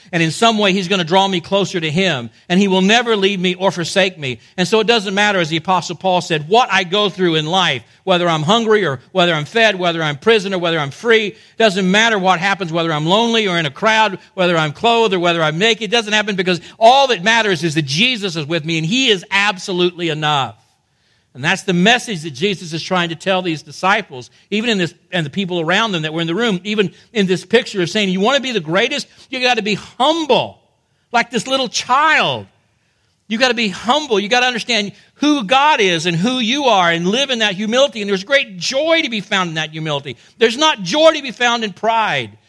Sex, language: male, English